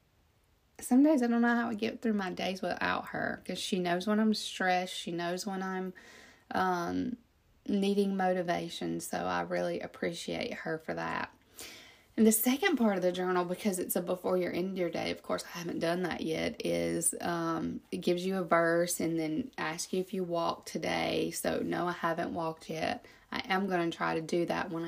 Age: 30-49